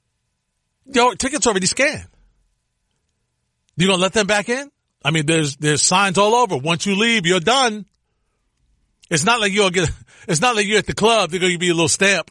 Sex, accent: male, American